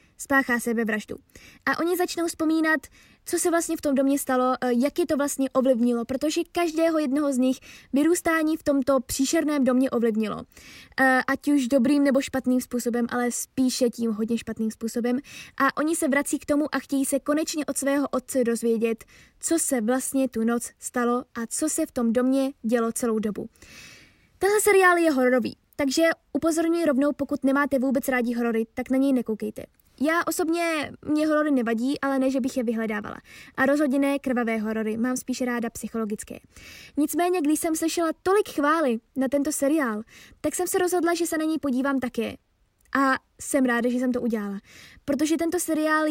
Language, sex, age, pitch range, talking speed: Czech, female, 20-39, 245-310 Hz, 175 wpm